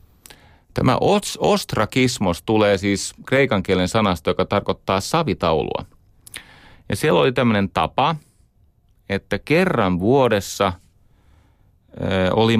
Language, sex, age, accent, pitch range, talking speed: Finnish, male, 30-49, native, 90-115 Hz, 90 wpm